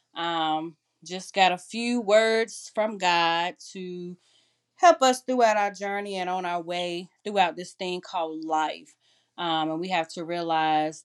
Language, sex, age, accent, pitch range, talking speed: English, female, 30-49, American, 165-205 Hz, 155 wpm